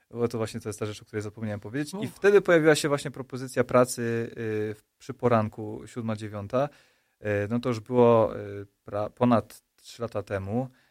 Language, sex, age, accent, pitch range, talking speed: Polish, male, 20-39, native, 105-125 Hz, 165 wpm